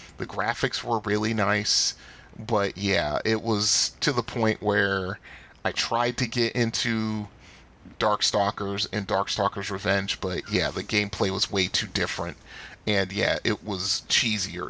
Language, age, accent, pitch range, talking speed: English, 30-49, American, 100-115 Hz, 145 wpm